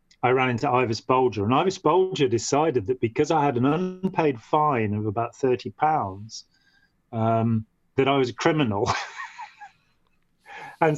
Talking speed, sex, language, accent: 150 wpm, male, English, British